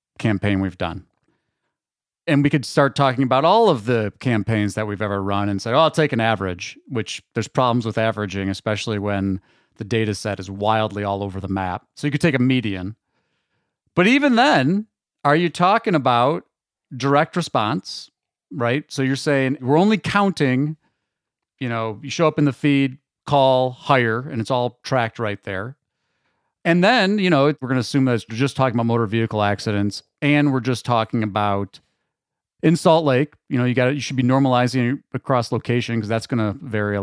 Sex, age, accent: male, 40-59, American